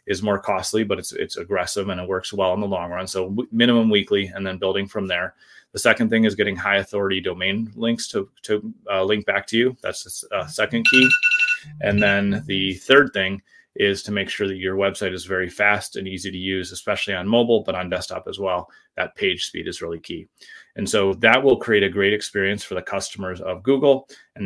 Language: English